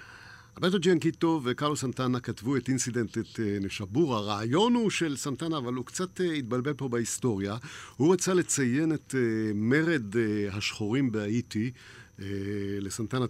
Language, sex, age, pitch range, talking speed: Hebrew, male, 50-69, 110-140 Hz, 125 wpm